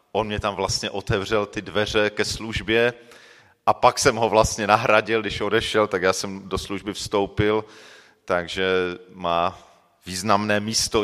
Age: 40-59